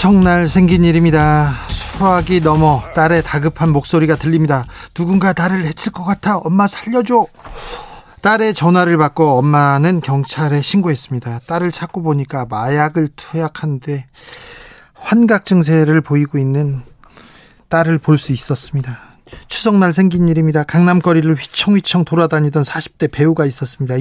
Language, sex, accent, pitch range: Korean, male, native, 145-180 Hz